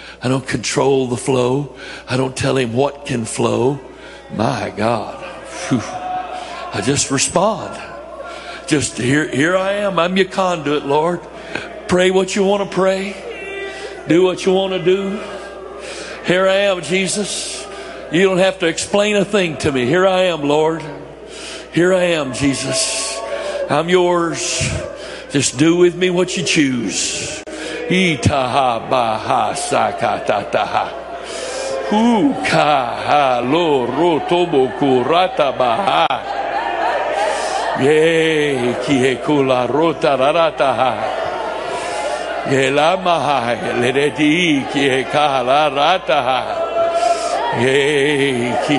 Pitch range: 135-190 Hz